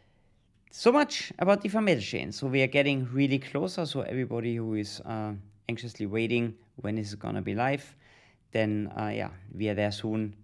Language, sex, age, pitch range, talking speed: English, male, 30-49, 105-135 Hz, 185 wpm